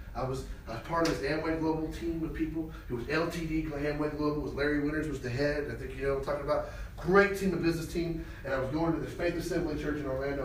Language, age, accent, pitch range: English, 40-59, American, 130-185 Hz